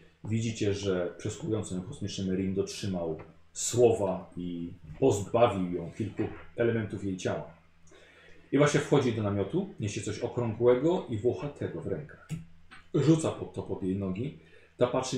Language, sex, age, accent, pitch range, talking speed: Polish, male, 40-59, native, 95-140 Hz, 135 wpm